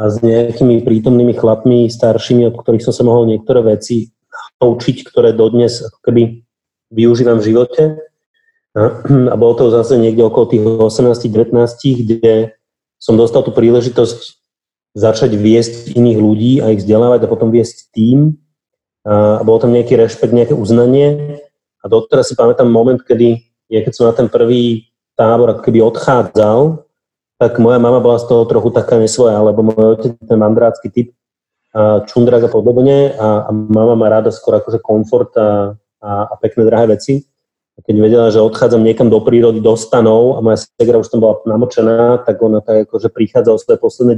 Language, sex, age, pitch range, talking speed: Slovak, male, 30-49, 110-125 Hz, 165 wpm